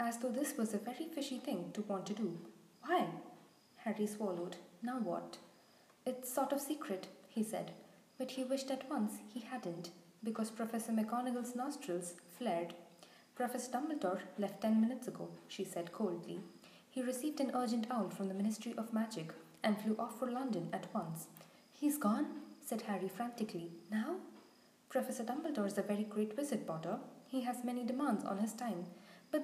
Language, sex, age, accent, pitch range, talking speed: English, female, 20-39, Indian, 200-265 Hz, 165 wpm